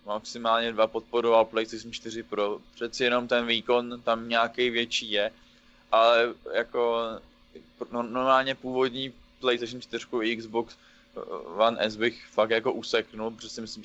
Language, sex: Czech, male